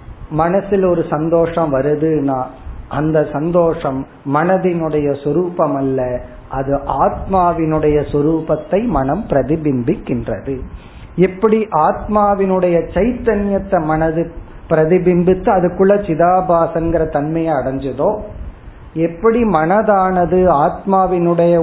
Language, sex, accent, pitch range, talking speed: Tamil, male, native, 145-185 Hz, 70 wpm